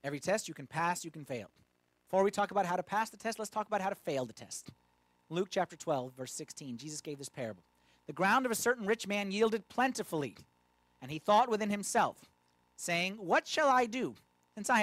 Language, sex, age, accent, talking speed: English, male, 30-49, American, 225 wpm